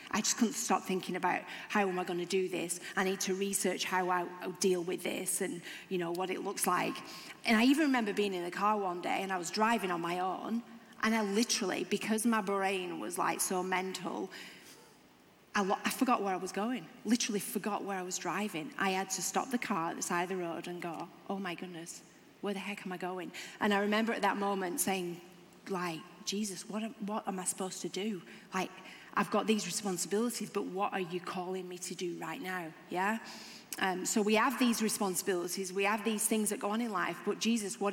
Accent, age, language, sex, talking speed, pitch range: British, 30-49, English, female, 225 wpm, 180-210 Hz